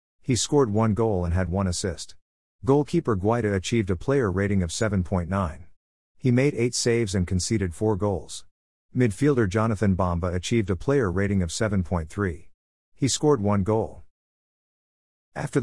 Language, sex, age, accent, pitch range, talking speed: English, male, 50-69, American, 90-115 Hz, 145 wpm